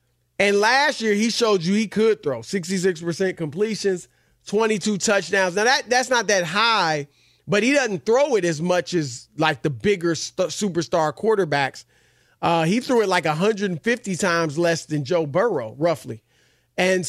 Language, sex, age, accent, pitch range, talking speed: English, male, 40-59, American, 165-225 Hz, 160 wpm